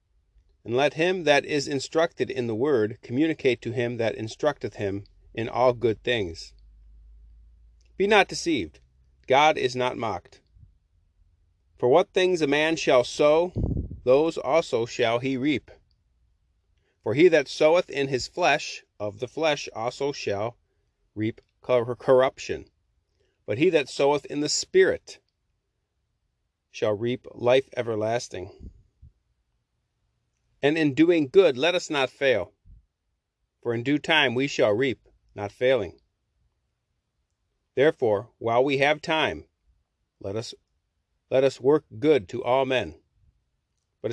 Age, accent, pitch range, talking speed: 30-49, American, 90-145 Hz, 130 wpm